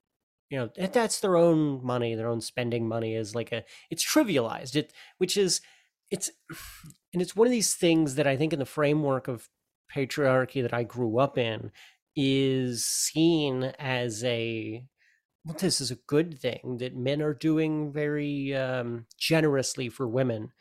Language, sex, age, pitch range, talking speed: English, male, 30-49, 120-150 Hz, 165 wpm